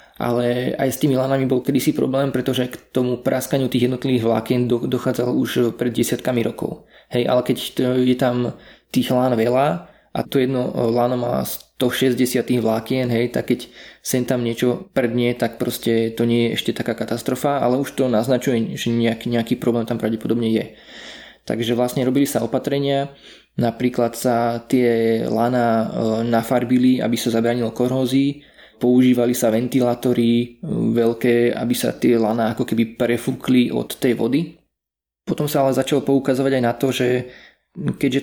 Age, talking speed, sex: 20-39, 155 wpm, male